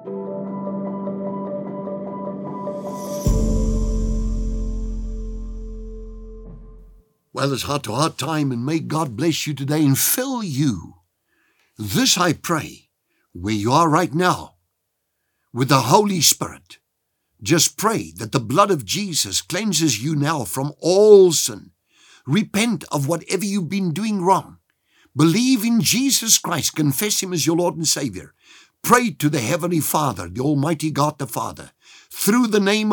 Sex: male